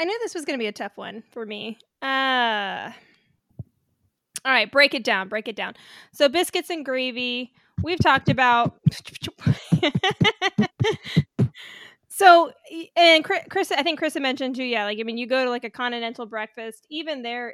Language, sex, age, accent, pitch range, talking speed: English, female, 20-39, American, 230-325 Hz, 170 wpm